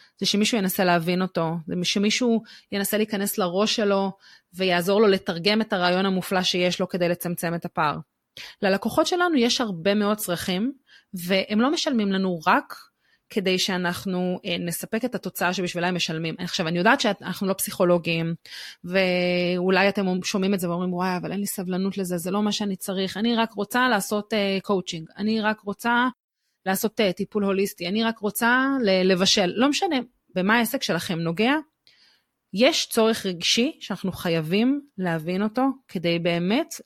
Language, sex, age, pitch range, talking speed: Hebrew, female, 30-49, 180-220 Hz, 155 wpm